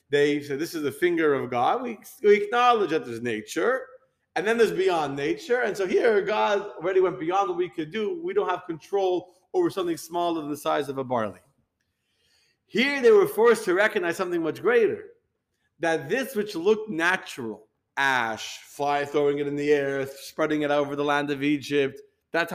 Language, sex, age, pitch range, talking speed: English, male, 40-59, 140-215 Hz, 195 wpm